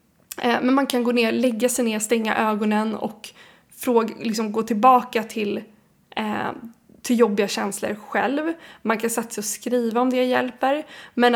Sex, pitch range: female, 215-250 Hz